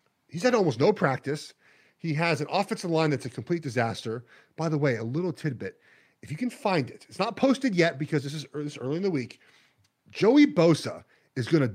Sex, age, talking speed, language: male, 40-59, 210 wpm, English